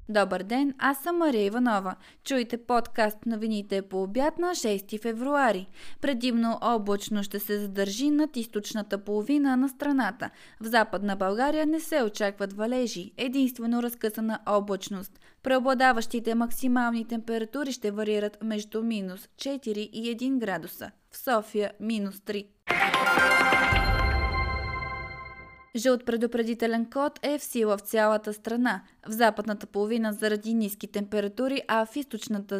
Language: Bulgarian